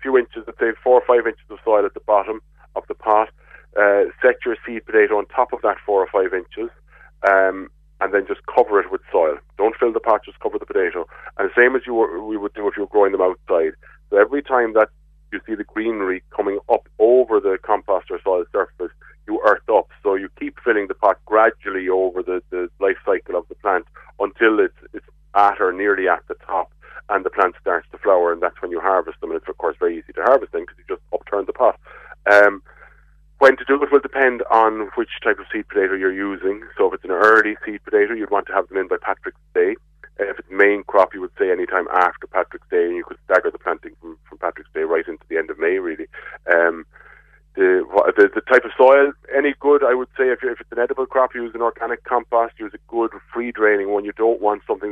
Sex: male